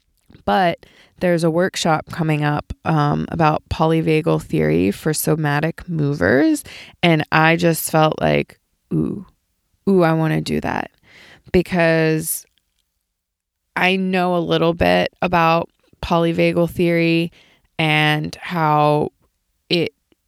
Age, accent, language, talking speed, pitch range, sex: 20-39, American, English, 110 wpm, 145-170 Hz, female